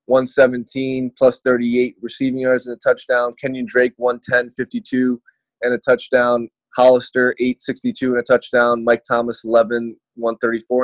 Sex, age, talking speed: male, 20-39, 135 wpm